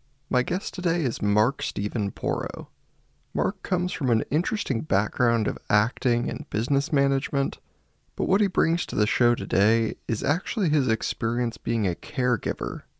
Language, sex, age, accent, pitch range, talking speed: English, male, 20-39, American, 110-140 Hz, 150 wpm